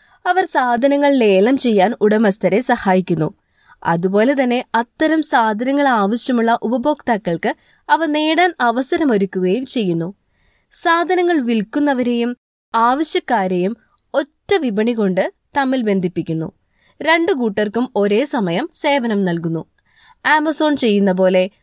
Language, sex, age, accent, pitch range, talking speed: Malayalam, female, 20-39, native, 205-285 Hz, 90 wpm